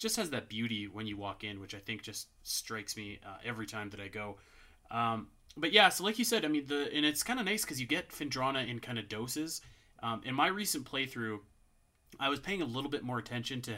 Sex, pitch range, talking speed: male, 105-130 Hz, 250 wpm